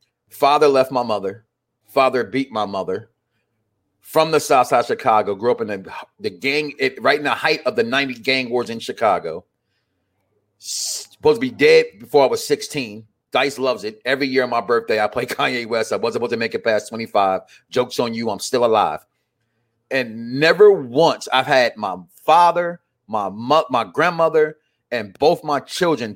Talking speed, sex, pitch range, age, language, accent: 190 wpm, male, 115-170 Hz, 30-49, English, American